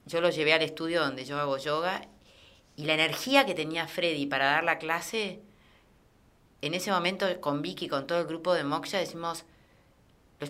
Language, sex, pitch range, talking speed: Spanish, female, 140-205 Hz, 190 wpm